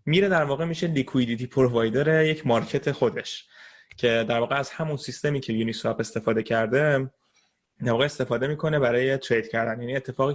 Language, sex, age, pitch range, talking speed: Persian, male, 20-39, 115-140 Hz, 160 wpm